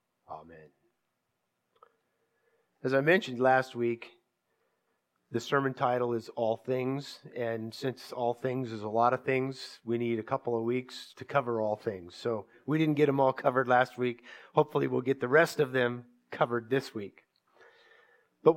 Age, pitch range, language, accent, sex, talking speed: 50-69, 120-150 Hz, English, American, male, 165 wpm